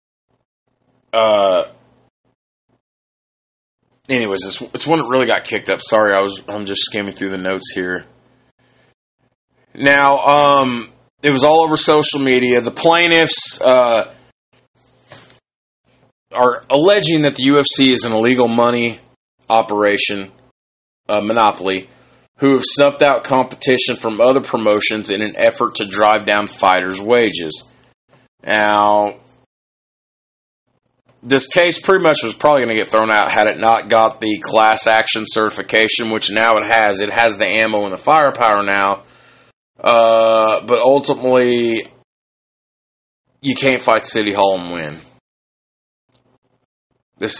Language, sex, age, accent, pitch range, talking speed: English, male, 30-49, American, 100-130 Hz, 130 wpm